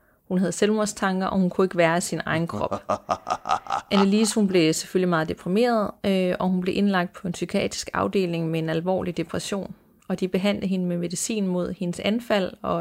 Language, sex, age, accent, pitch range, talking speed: Danish, female, 30-49, native, 180-205 Hz, 185 wpm